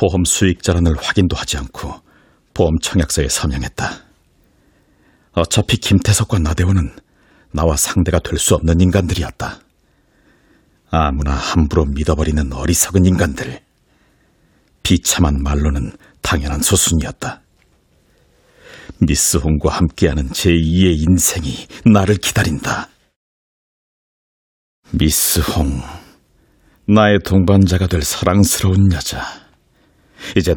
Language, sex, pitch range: Korean, male, 80-95 Hz